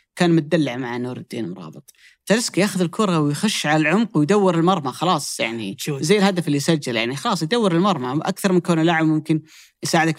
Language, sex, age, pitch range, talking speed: Arabic, female, 30-49, 135-175 Hz, 175 wpm